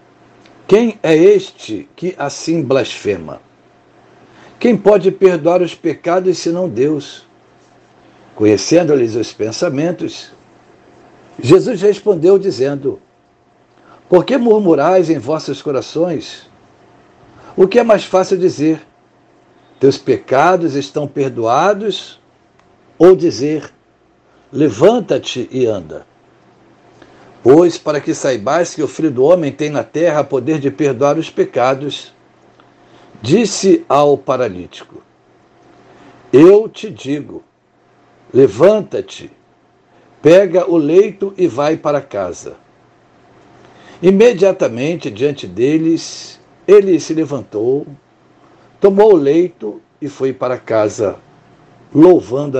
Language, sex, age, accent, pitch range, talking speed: Portuguese, male, 60-79, Brazilian, 145-215 Hz, 95 wpm